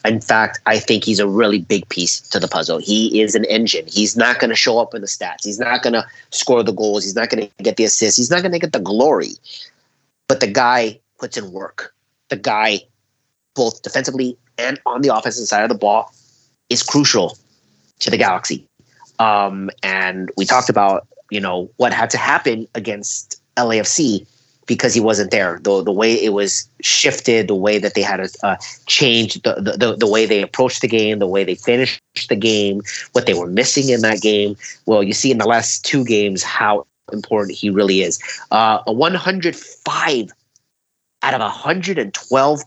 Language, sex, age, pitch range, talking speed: English, male, 30-49, 105-130 Hz, 195 wpm